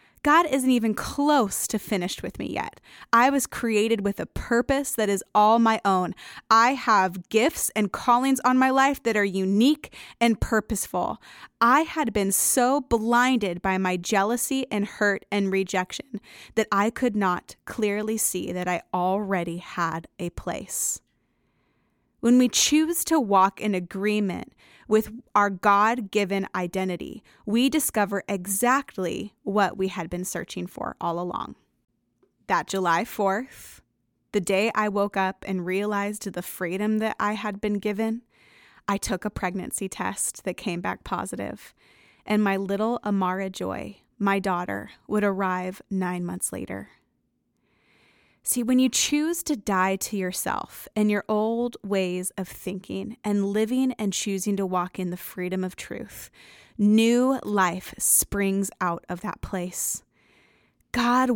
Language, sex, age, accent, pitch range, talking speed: English, female, 20-39, American, 190-230 Hz, 145 wpm